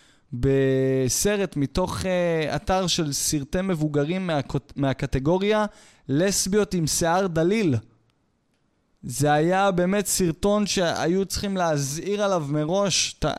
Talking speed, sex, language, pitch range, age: 105 wpm, male, Hebrew, 140-195 Hz, 20-39